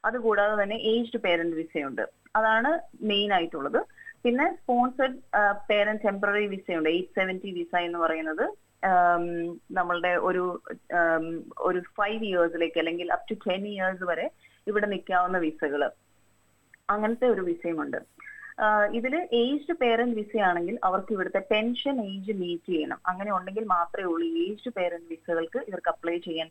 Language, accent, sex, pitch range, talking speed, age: Malayalam, native, female, 170-215 Hz, 125 wpm, 30-49